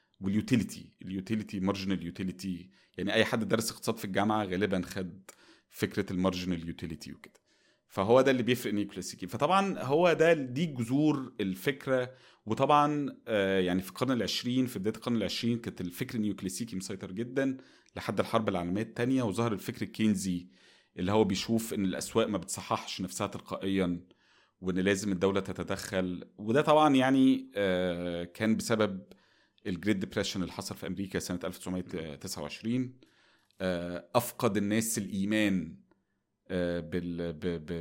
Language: Arabic